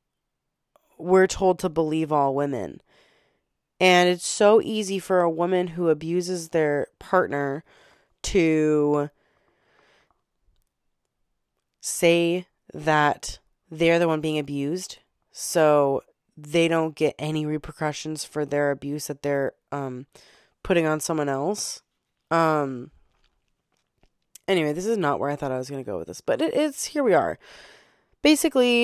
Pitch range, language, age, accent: 145-180 Hz, English, 20-39, American